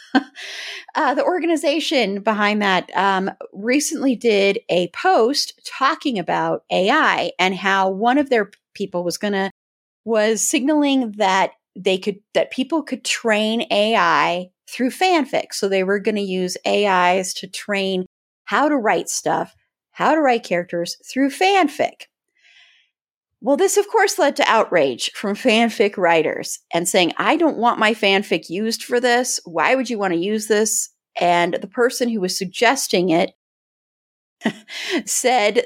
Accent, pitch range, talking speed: American, 185-260 Hz, 145 wpm